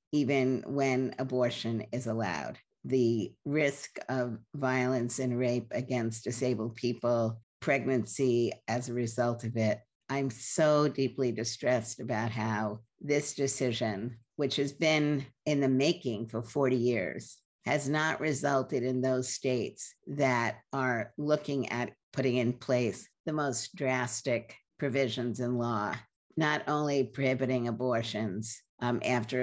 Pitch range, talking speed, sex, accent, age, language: 115-135 Hz, 125 wpm, female, American, 50-69, English